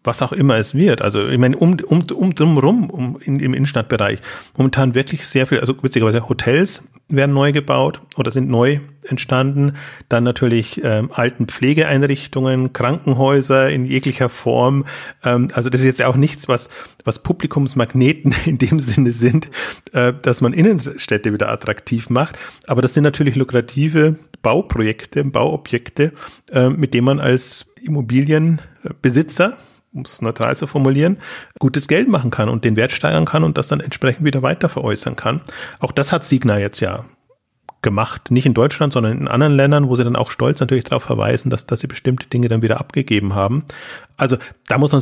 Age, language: 40-59, German